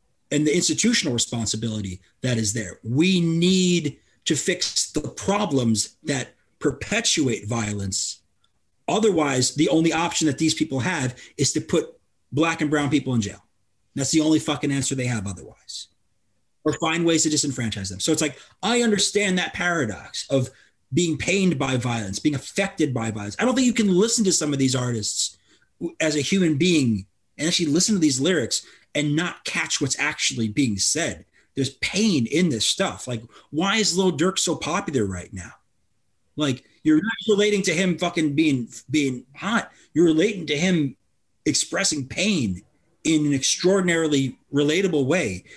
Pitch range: 125-180 Hz